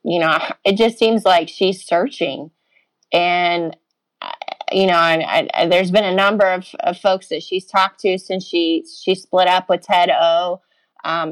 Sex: female